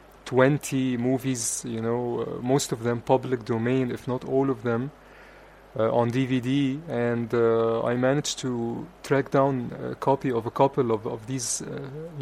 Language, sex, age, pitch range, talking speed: English, male, 30-49, 120-140 Hz, 165 wpm